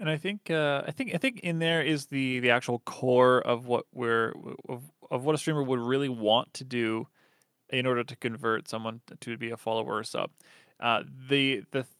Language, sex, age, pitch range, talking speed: English, male, 20-39, 120-145 Hz, 210 wpm